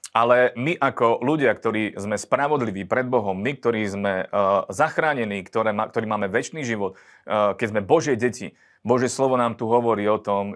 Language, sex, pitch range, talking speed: Slovak, male, 100-115 Hz, 170 wpm